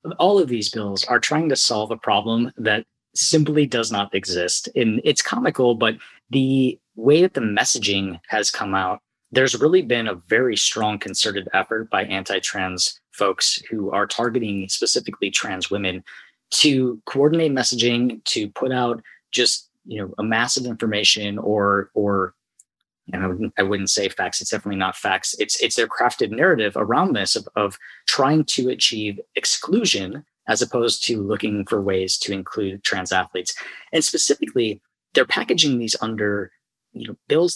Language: English